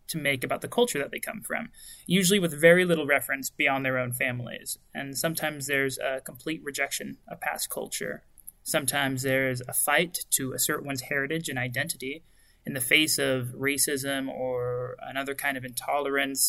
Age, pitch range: 20-39, 135-165 Hz